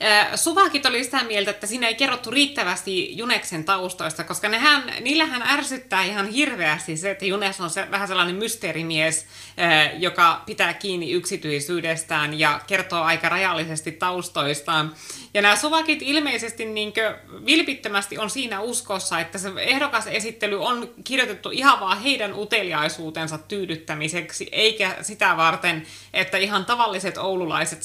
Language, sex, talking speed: Finnish, female, 125 wpm